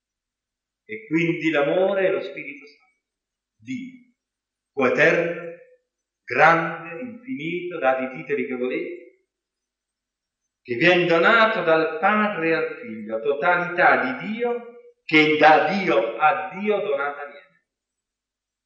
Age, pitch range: 50-69, 130-215 Hz